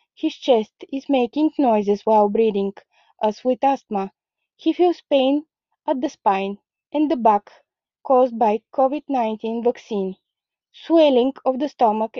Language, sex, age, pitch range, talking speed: English, female, 20-39, 215-275 Hz, 135 wpm